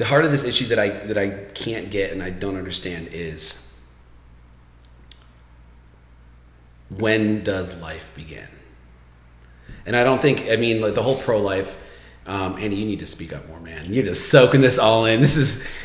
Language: English